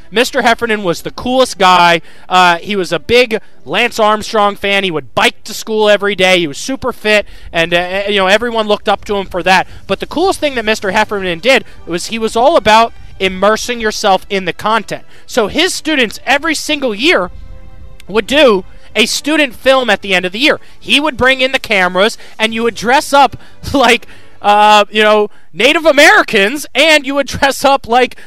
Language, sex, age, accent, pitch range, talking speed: English, male, 20-39, American, 195-260 Hz, 200 wpm